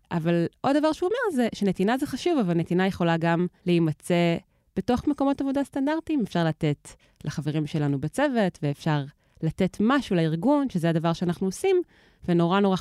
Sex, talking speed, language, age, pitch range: female, 155 wpm, Hebrew, 20-39, 160-220 Hz